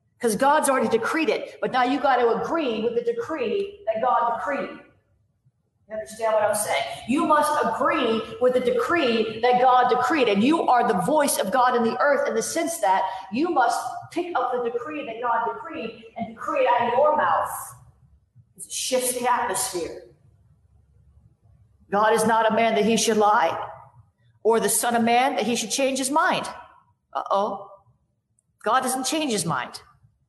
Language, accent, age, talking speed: English, American, 40-59, 180 wpm